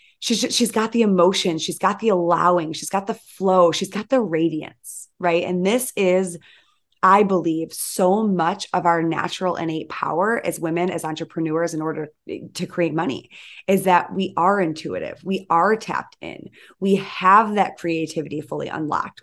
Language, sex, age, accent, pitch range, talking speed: English, female, 20-39, American, 165-200 Hz, 170 wpm